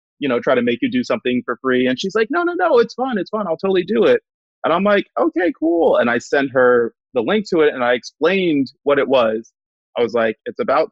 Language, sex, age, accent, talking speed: English, male, 30-49, American, 265 wpm